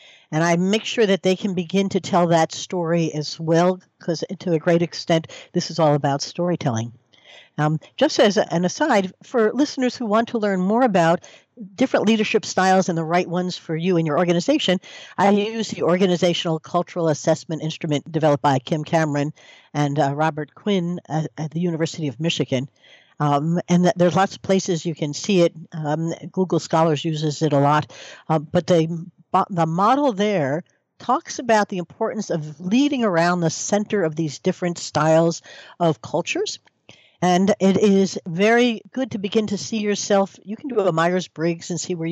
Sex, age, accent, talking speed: female, 60-79, American, 180 wpm